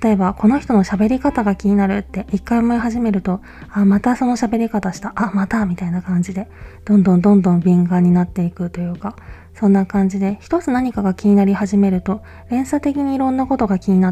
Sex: female